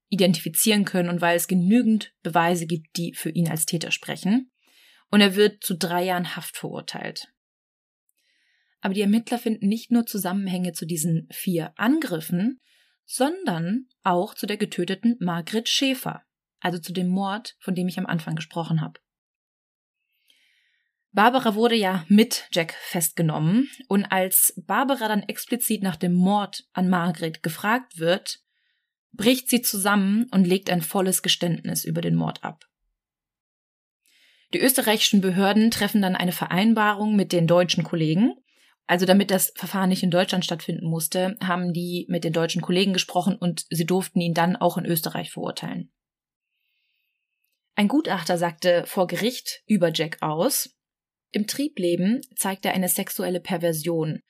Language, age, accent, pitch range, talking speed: German, 20-39, German, 175-220 Hz, 145 wpm